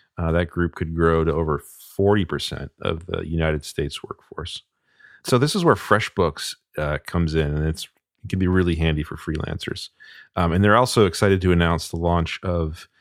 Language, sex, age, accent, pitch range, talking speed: English, male, 40-59, American, 85-100 Hz, 180 wpm